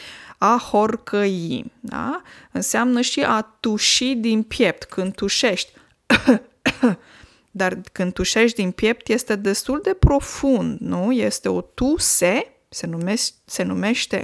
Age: 20-39